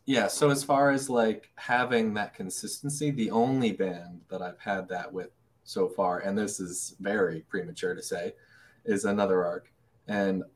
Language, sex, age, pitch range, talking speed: English, male, 20-39, 95-120 Hz, 170 wpm